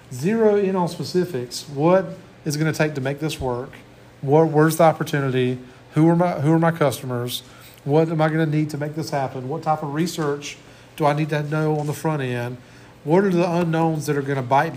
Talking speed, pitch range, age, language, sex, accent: 230 wpm, 135-165 Hz, 40-59, English, male, American